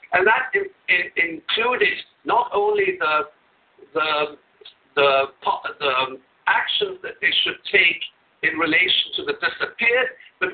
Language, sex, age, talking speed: English, male, 60-79, 100 wpm